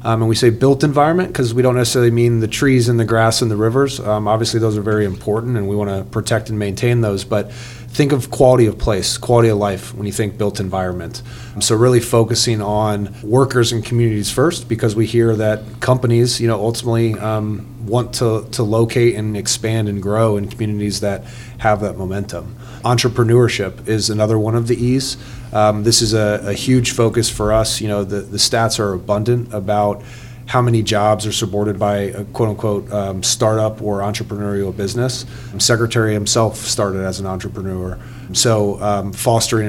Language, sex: English, male